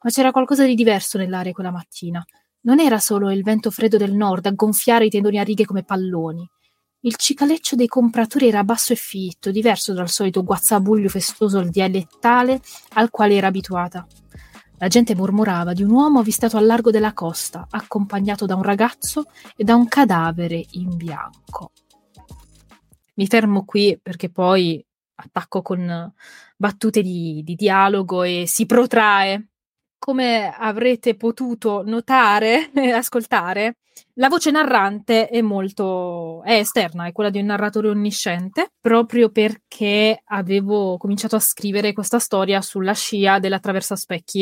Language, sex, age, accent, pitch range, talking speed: Italian, female, 20-39, native, 190-230 Hz, 150 wpm